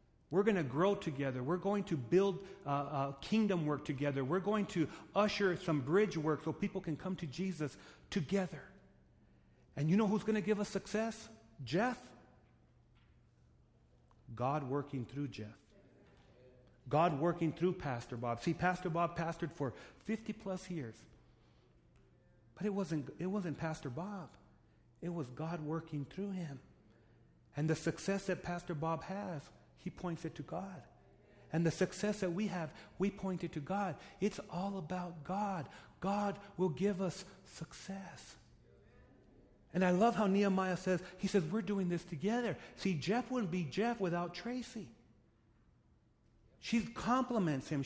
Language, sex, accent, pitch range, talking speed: English, male, American, 155-200 Hz, 150 wpm